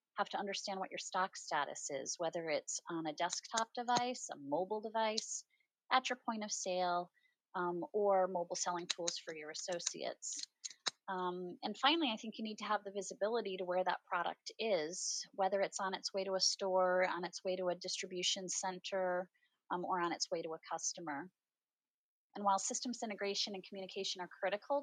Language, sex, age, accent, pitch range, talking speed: English, female, 30-49, American, 165-200 Hz, 185 wpm